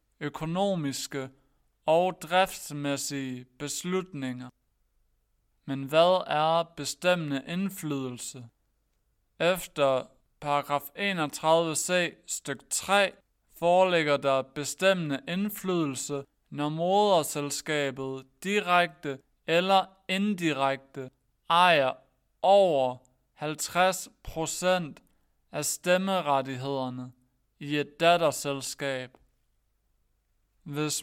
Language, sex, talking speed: Danish, male, 60 wpm